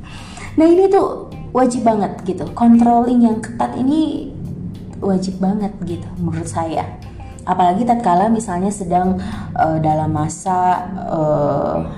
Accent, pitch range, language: native, 175-235 Hz, Indonesian